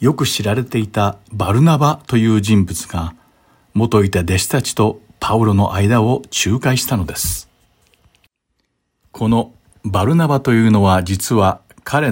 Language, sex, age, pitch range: Japanese, male, 60-79, 95-120 Hz